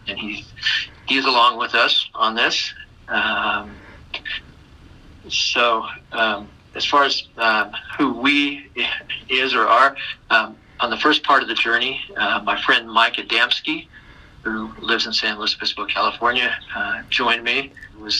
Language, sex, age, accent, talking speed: English, male, 50-69, American, 150 wpm